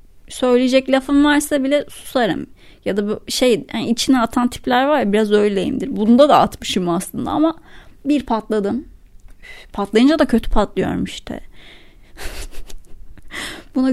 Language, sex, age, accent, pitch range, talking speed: Turkish, female, 30-49, native, 210-260 Hz, 135 wpm